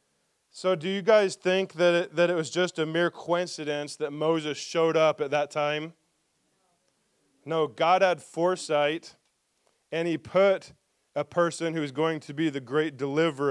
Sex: male